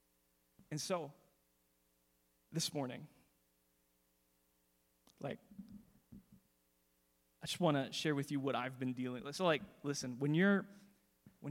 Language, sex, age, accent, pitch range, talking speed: English, male, 20-39, American, 125-170 Hz, 115 wpm